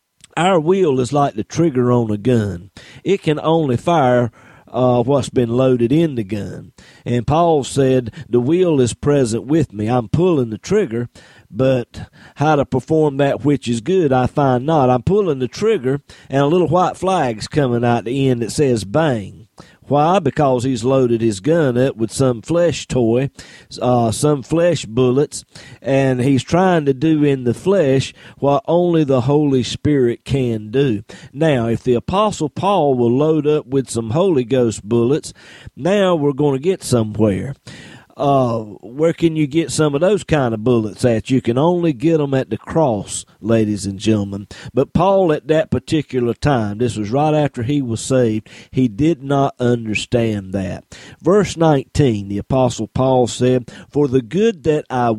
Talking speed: 175 wpm